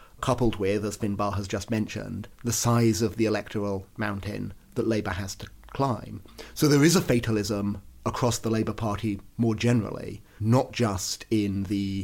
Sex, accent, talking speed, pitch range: male, British, 165 wpm, 100-115 Hz